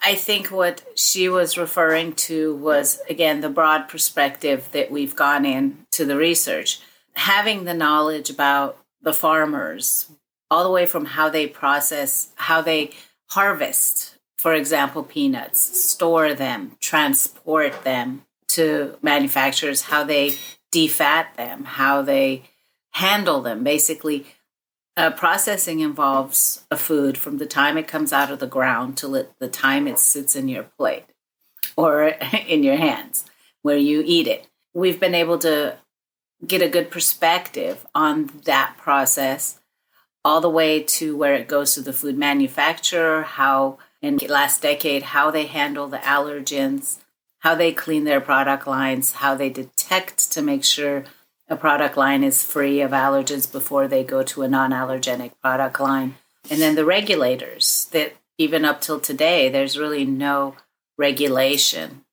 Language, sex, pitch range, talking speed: English, female, 140-165 Hz, 150 wpm